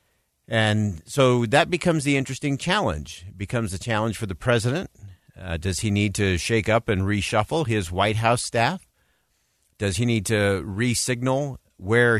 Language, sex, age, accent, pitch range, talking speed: English, male, 50-69, American, 95-130 Hz, 155 wpm